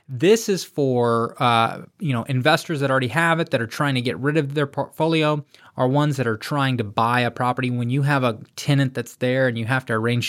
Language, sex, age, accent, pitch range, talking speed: English, male, 20-39, American, 115-150 Hz, 240 wpm